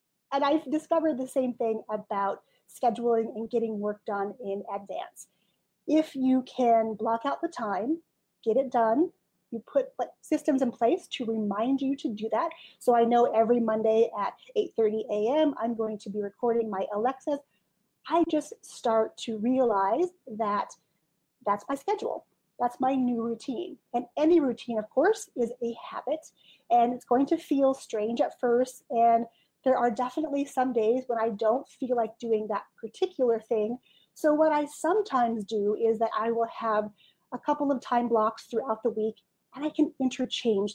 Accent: American